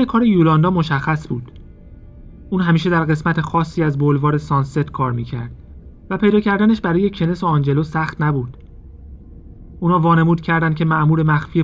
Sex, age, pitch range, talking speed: male, 30-49, 125-165 Hz, 150 wpm